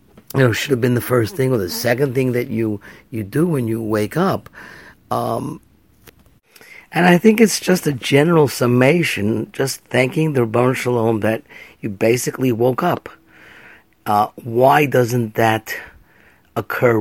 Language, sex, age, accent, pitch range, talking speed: English, male, 50-69, American, 115-140 Hz, 155 wpm